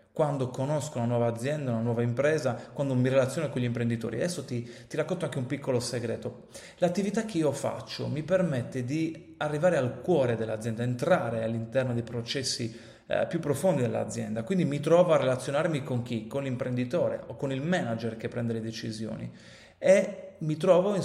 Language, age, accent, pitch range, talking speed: Italian, 30-49, native, 120-170 Hz, 175 wpm